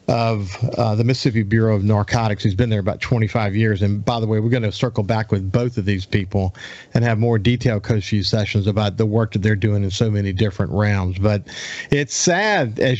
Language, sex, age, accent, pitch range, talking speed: English, male, 40-59, American, 105-120 Hz, 220 wpm